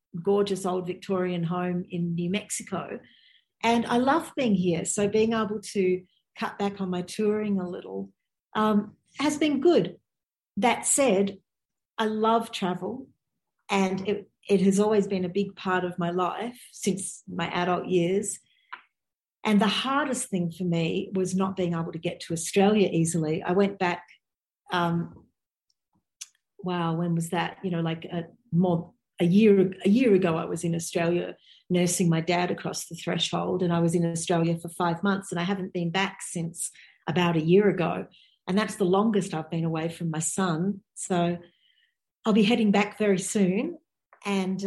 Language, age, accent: English, 50-69, Australian